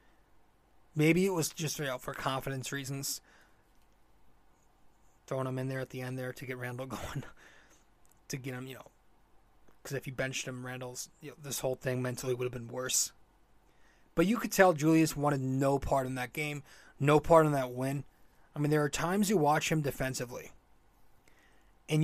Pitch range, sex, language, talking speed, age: 130-160 Hz, male, English, 175 wpm, 30-49